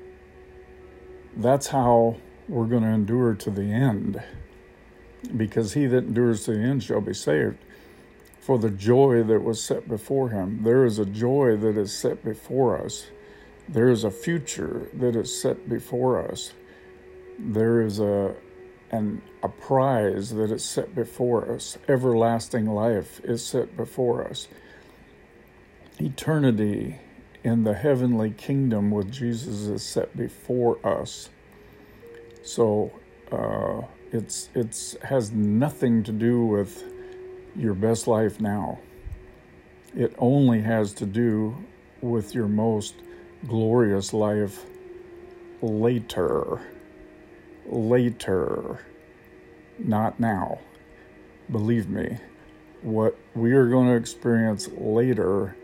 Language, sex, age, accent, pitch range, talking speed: English, male, 50-69, American, 105-130 Hz, 115 wpm